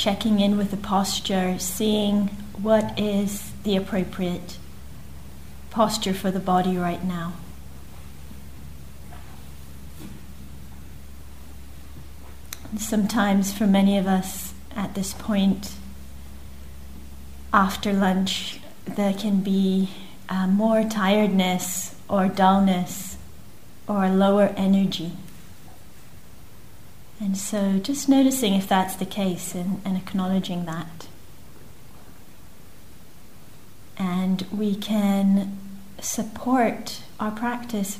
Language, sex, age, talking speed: English, female, 30-49, 85 wpm